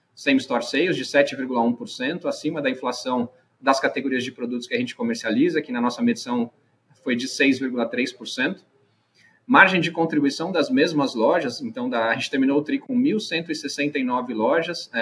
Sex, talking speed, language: male, 150 wpm, Portuguese